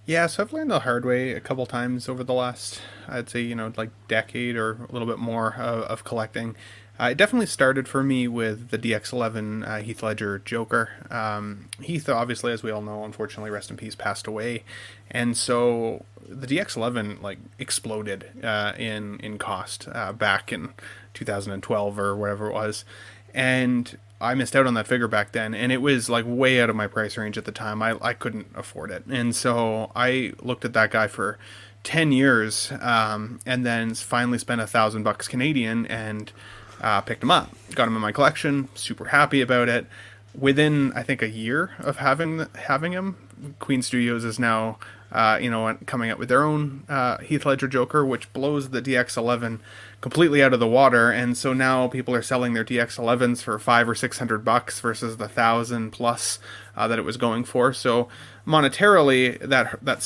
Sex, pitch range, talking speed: male, 110-130 Hz, 195 wpm